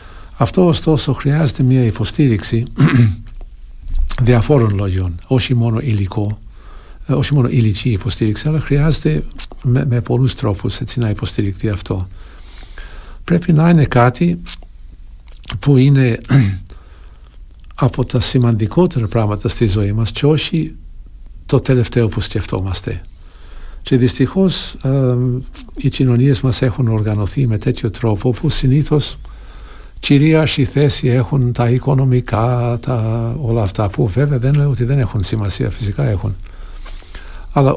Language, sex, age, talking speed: Greek, male, 60-79, 120 wpm